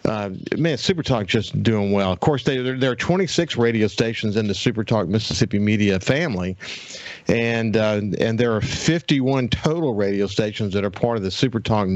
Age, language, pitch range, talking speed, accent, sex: 50-69, English, 100-120 Hz, 175 wpm, American, male